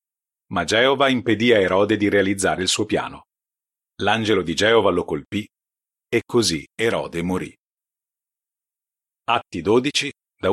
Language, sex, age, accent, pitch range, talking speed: Italian, male, 40-59, native, 100-130 Hz, 125 wpm